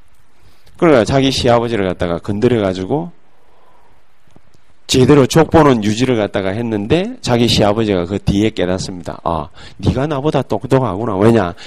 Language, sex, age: Korean, male, 40-59